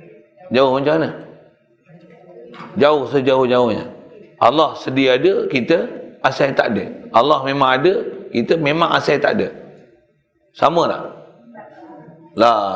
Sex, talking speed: male, 110 wpm